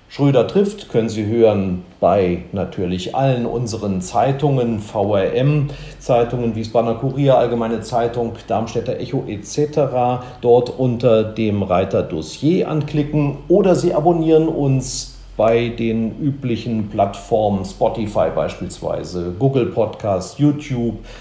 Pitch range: 110-145 Hz